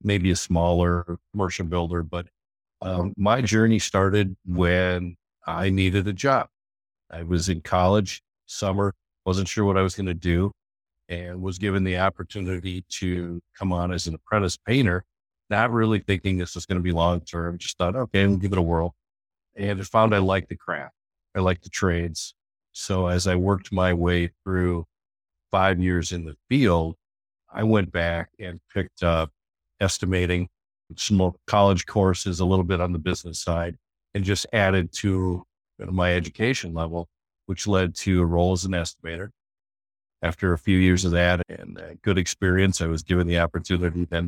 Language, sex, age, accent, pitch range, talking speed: English, male, 50-69, American, 85-95 Hz, 170 wpm